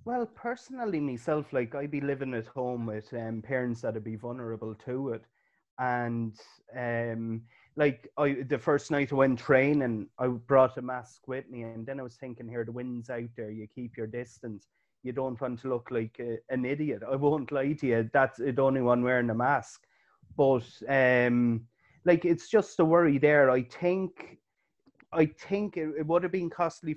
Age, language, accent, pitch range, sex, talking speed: 30-49, English, Irish, 120-140 Hz, male, 195 wpm